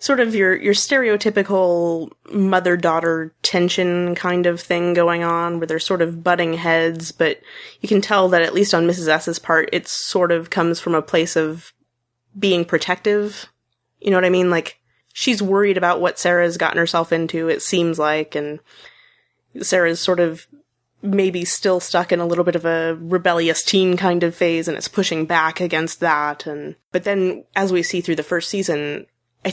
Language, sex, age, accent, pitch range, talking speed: English, female, 20-39, American, 160-185 Hz, 185 wpm